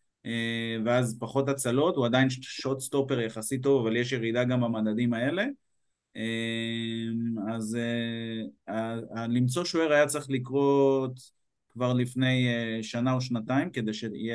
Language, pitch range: Hebrew, 115-135 Hz